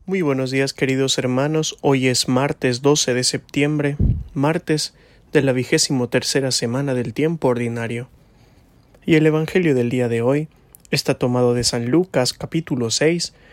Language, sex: English, male